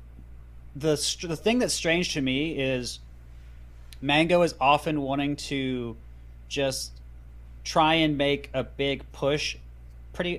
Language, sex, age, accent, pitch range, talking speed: English, male, 30-49, American, 110-150 Hz, 125 wpm